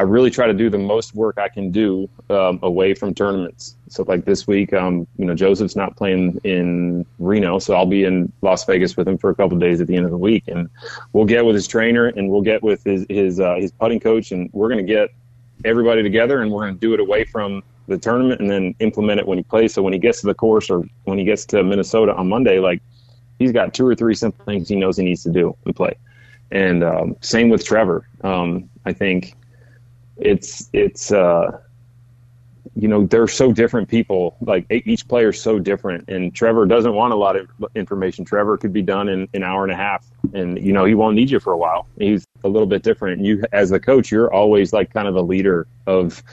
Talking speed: 240 wpm